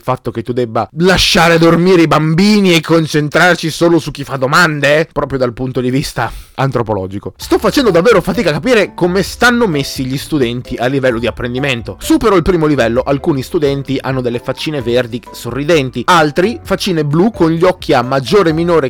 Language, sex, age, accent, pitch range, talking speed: Italian, male, 20-39, native, 120-170 Hz, 185 wpm